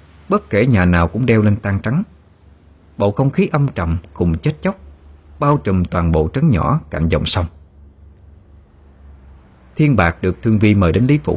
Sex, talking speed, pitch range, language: male, 185 wpm, 80-115 Hz, Vietnamese